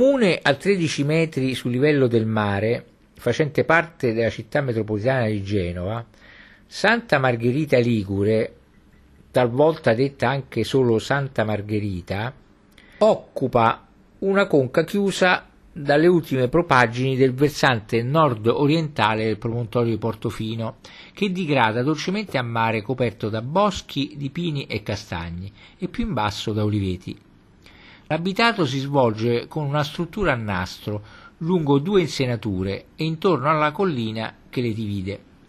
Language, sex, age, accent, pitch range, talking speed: Italian, male, 50-69, native, 110-155 Hz, 125 wpm